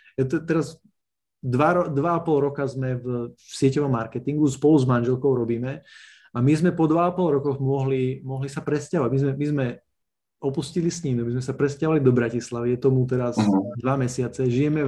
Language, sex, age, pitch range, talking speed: Slovak, male, 20-39, 125-150 Hz, 175 wpm